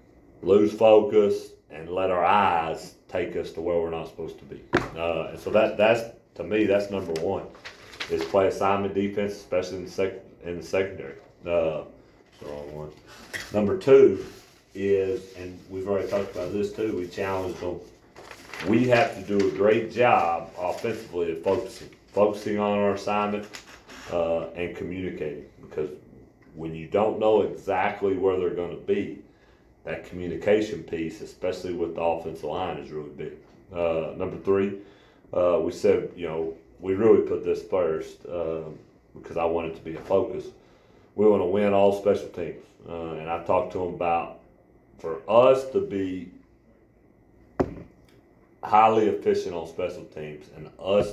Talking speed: 160 wpm